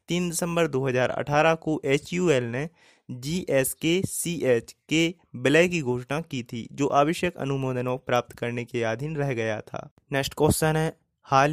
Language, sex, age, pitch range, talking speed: Hindi, male, 20-39, 130-160 Hz, 140 wpm